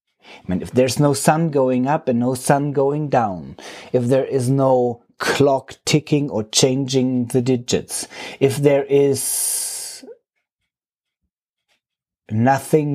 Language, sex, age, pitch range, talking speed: English, male, 30-49, 120-140 Hz, 125 wpm